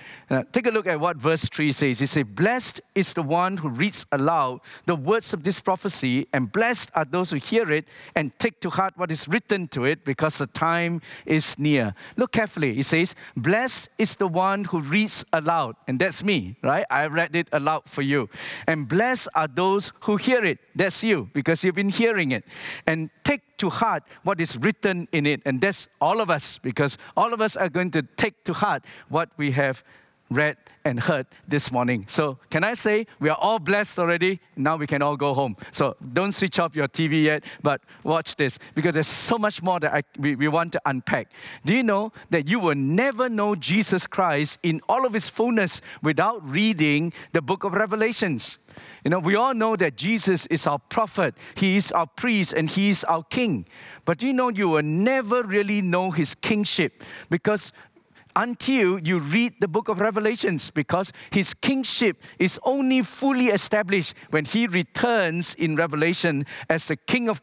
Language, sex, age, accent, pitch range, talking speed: English, male, 50-69, Malaysian, 150-210 Hz, 195 wpm